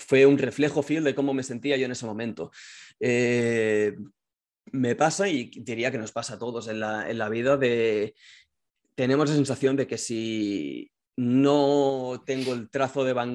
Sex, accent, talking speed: male, Spanish, 180 wpm